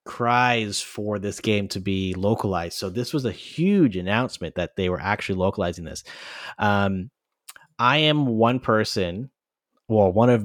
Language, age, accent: English, 30-49, American